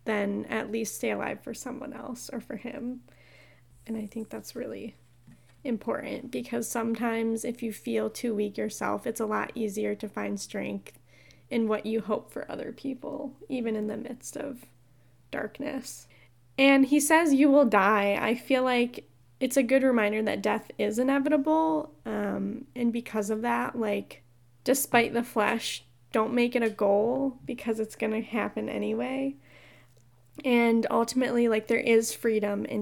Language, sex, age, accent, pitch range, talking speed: English, female, 10-29, American, 205-250 Hz, 165 wpm